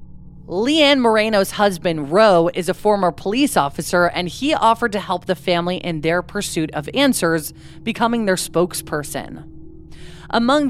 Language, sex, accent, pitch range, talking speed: English, female, American, 165-220 Hz, 140 wpm